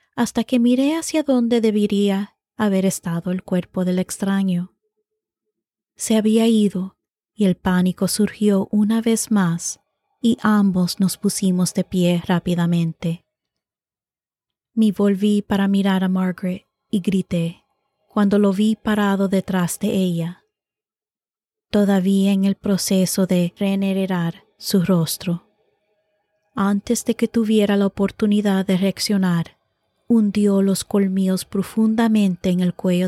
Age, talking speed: 20-39, 120 wpm